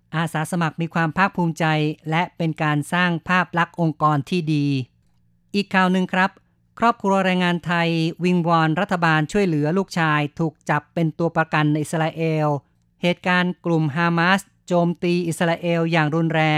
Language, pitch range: Thai, 150-175 Hz